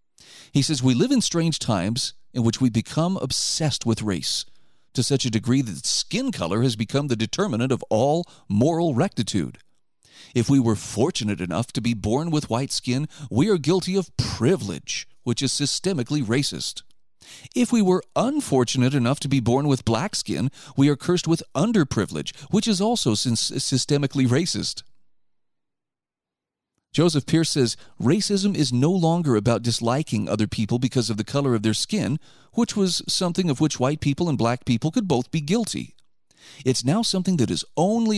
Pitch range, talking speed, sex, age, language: 115-160 Hz, 170 wpm, male, 40-59, English